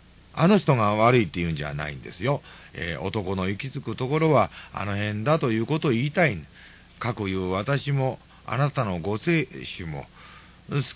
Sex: male